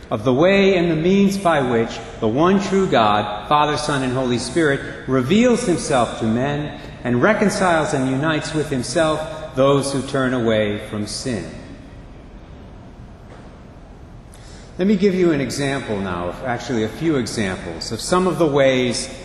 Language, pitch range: English, 115-160 Hz